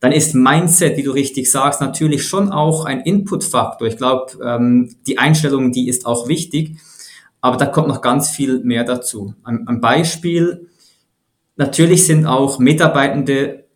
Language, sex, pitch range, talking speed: German, male, 120-155 Hz, 150 wpm